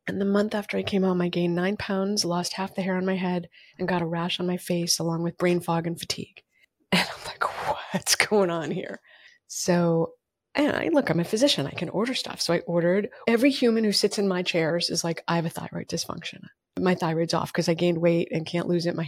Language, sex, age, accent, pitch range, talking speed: English, female, 30-49, American, 170-205 Hz, 245 wpm